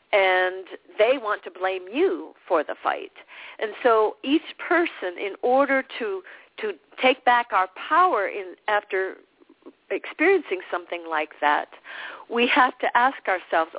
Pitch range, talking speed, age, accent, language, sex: 180-280 Hz, 140 wpm, 50-69, American, English, female